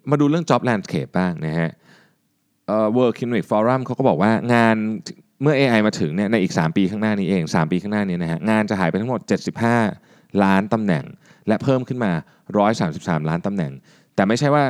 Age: 20-39